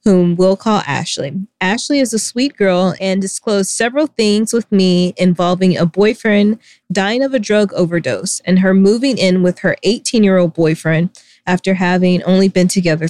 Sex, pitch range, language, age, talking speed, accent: female, 175-205 Hz, English, 20-39, 175 wpm, American